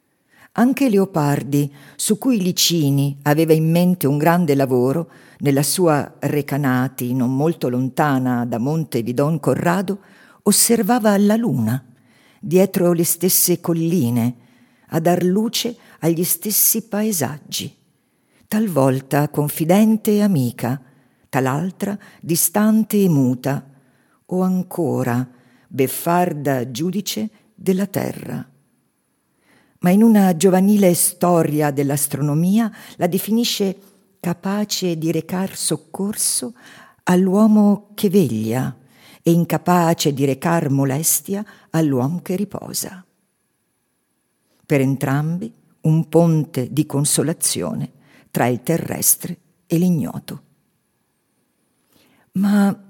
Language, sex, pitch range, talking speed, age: Italian, female, 140-200 Hz, 95 wpm, 50-69